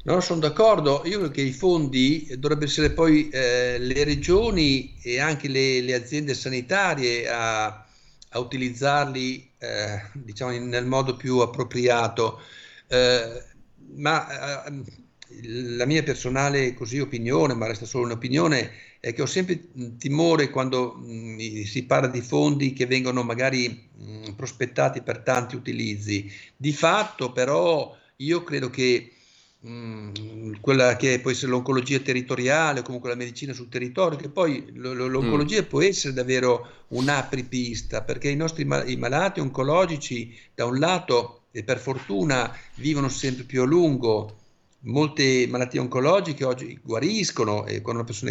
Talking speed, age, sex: 140 wpm, 50-69, male